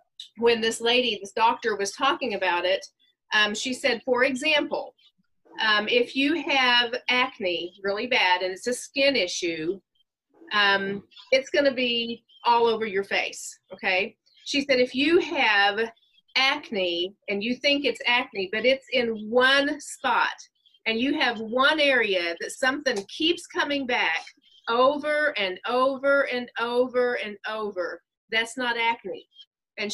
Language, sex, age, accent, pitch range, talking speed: English, female, 40-59, American, 205-275 Hz, 145 wpm